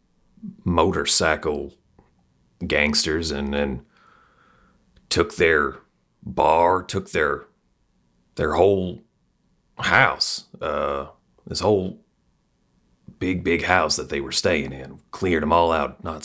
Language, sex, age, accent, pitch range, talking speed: English, male, 40-59, American, 75-90 Hz, 105 wpm